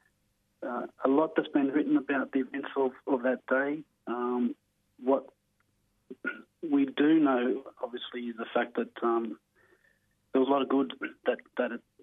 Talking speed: 160 wpm